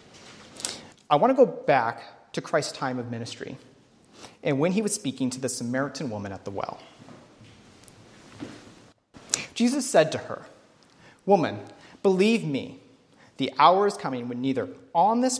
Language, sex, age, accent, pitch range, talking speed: English, male, 30-49, American, 120-190 Hz, 145 wpm